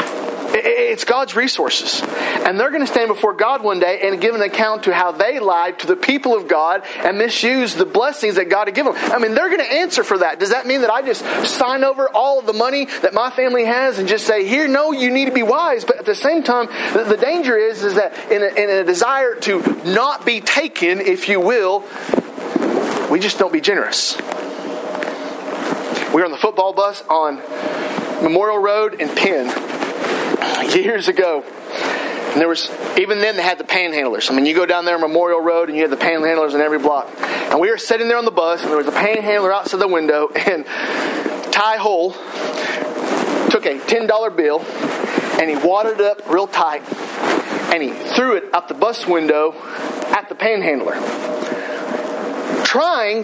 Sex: male